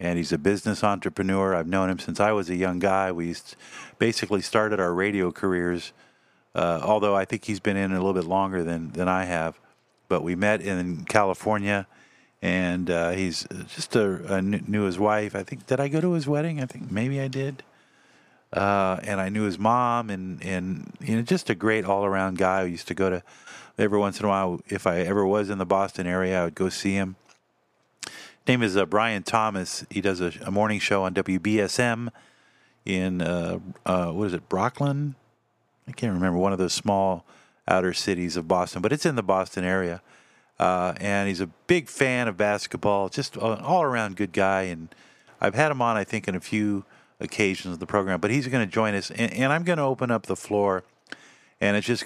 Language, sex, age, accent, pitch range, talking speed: English, male, 50-69, American, 95-115 Hz, 210 wpm